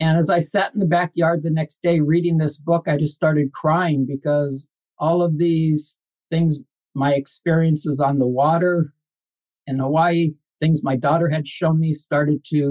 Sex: male